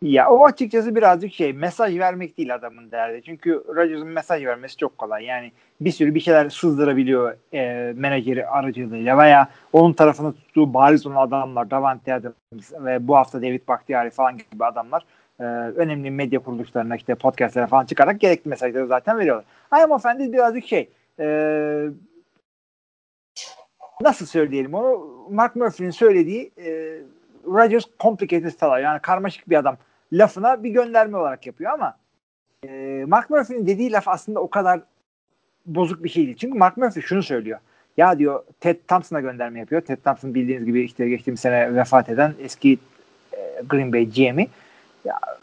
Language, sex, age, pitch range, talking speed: Turkish, male, 30-49, 130-200 Hz, 155 wpm